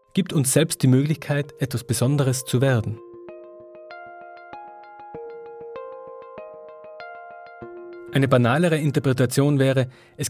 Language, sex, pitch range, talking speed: German, male, 115-145 Hz, 80 wpm